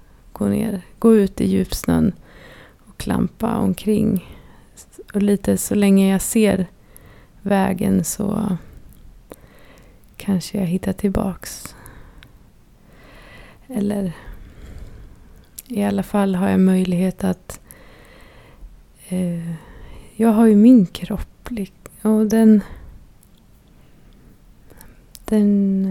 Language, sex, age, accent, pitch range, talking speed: Swedish, female, 30-49, native, 180-205 Hz, 90 wpm